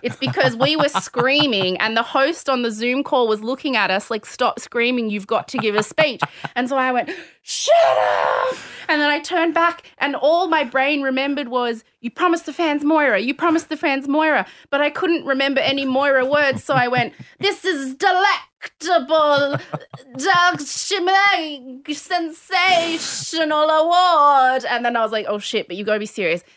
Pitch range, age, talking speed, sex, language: 240-320 Hz, 20-39, 180 wpm, female, English